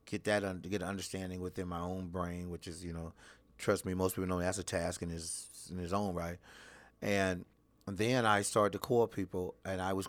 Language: English